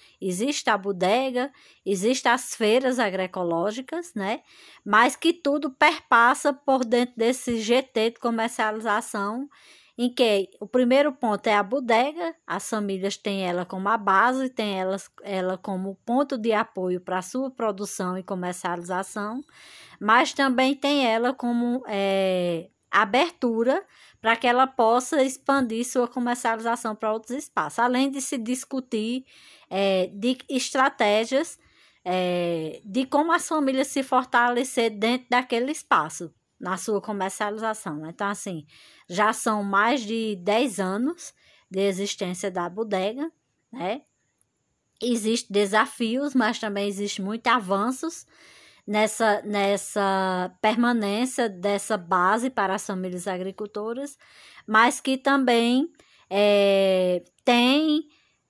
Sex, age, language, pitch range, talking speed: female, 20-39, Portuguese, 200-255 Hz, 120 wpm